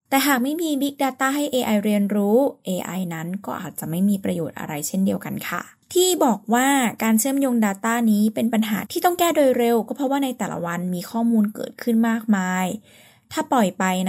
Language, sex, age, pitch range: Thai, female, 10-29, 200-245 Hz